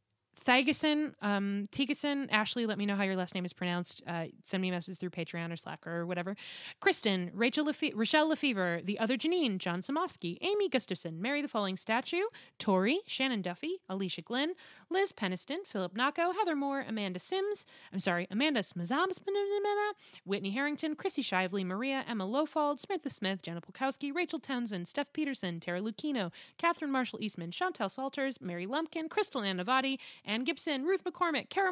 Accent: American